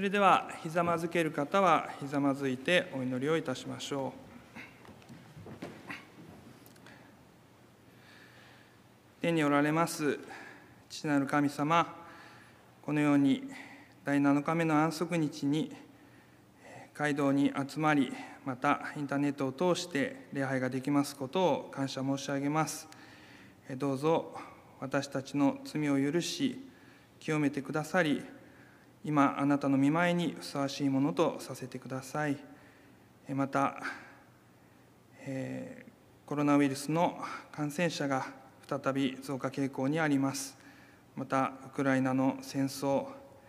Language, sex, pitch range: Japanese, male, 135-155 Hz